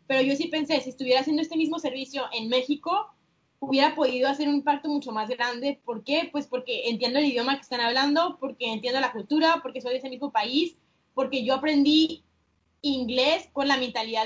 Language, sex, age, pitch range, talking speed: Spanish, female, 10-29, 245-295 Hz, 200 wpm